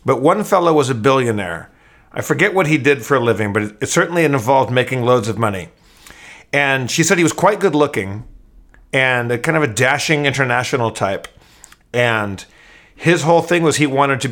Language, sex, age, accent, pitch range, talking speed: English, male, 40-59, American, 115-155 Hz, 195 wpm